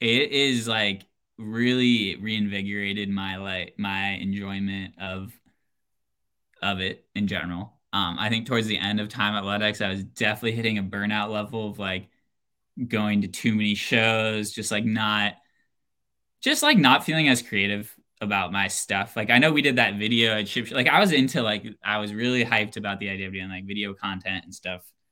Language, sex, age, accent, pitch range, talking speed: English, male, 10-29, American, 95-110 Hz, 185 wpm